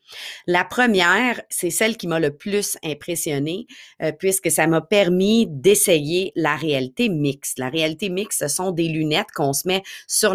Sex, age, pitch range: female, 40-59, 155-205 Hz